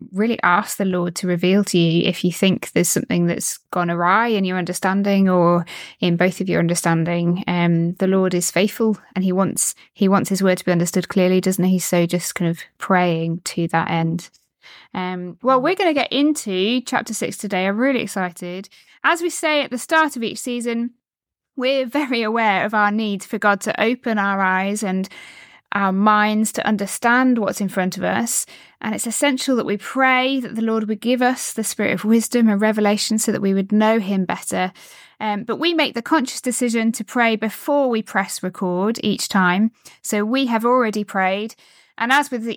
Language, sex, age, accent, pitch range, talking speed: English, female, 20-39, British, 185-235 Hz, 200 wpm